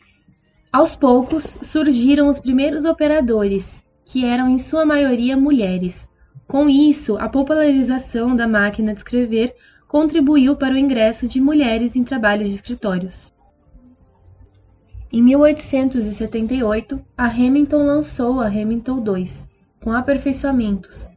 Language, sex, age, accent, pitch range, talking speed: Portuguese, female, 10-29, Brazilian, 215-265 Hz, 115 wpm